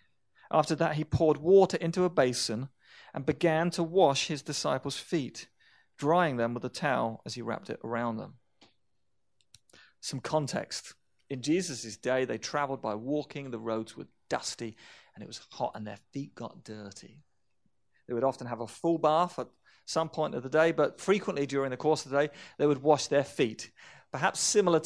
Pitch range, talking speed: 120-155 Hz, 185 wpm